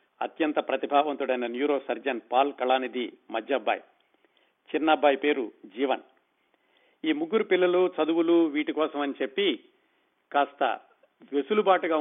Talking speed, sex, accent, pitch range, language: 100 wpm, male, native, 135-165 Hz, Telugu